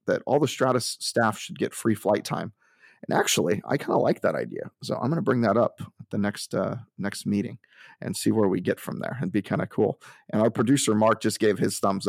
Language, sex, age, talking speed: English, male, 30-49, 255 wpm